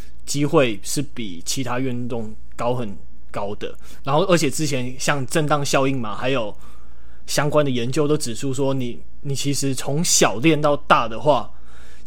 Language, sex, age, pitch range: Chinese, male, 20-39, 120-155 Hz